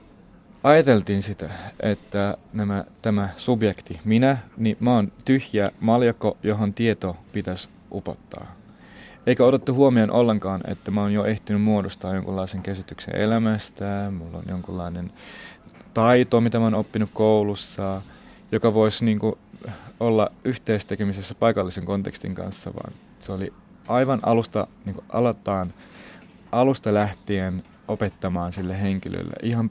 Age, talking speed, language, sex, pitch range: 30-49, 115 wpm, Finnish, male, 100-125 Hz